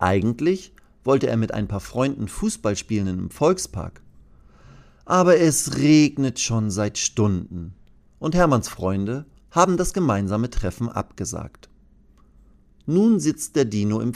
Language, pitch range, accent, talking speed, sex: German, 100-150 Hz, German, 125 wpm, male